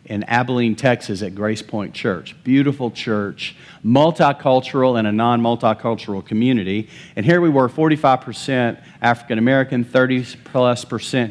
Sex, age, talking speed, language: male, 40-59, 120 wpm, English